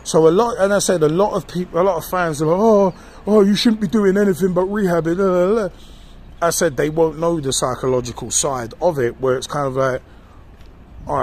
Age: 20-39